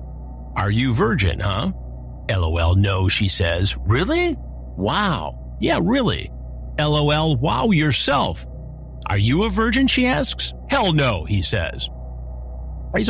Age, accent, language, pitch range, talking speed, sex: 50-69, American, English, 80-130 Hz, 120 wpm, male